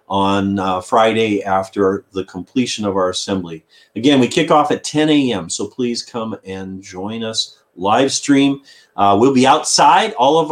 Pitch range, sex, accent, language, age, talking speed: 95-125 Hz, male, American, English, 40-59, 170 wpm